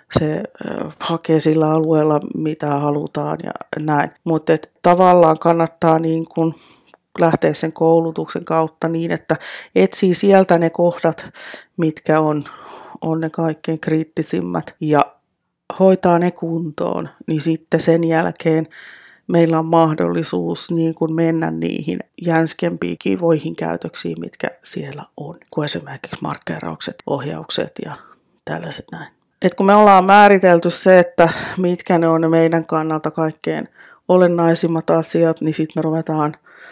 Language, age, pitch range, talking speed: Finnish, 30-49, 155-175 Hz, 125 wpm